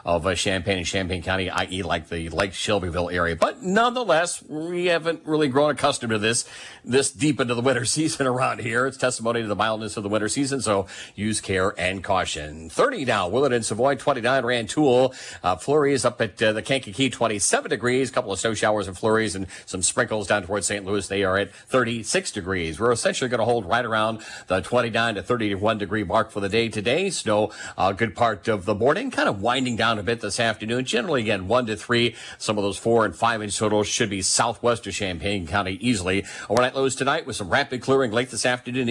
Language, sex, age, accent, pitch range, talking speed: English, male, 40-59, American, 100-130 Hz, 215 wpm